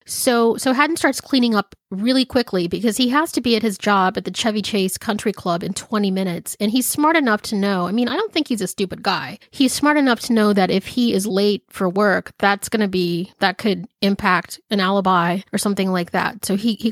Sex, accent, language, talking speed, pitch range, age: female, American, English, 240 wpm, 190-230 Hz, 30-49